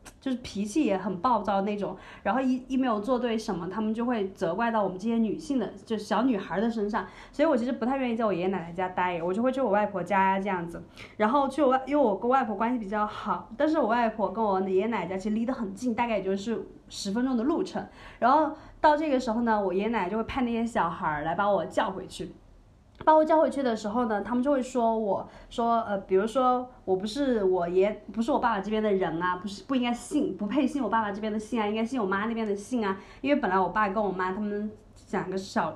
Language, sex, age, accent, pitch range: Chinese, female, 30-49, native, 195-255 Hz